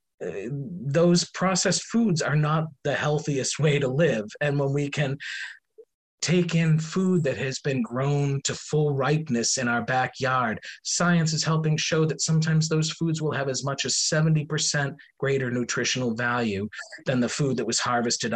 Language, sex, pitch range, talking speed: English, male, 120-155 Hz, 165 wpm